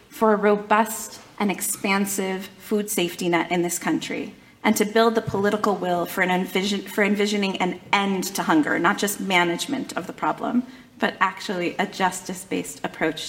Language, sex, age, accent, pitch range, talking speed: English, female, 30-49, American, 190-230 Hz, 160 wpm